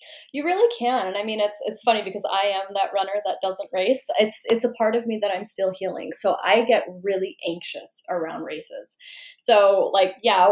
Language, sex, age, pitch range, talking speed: English, female, 10-29, 185-255 Hz, 210 wpm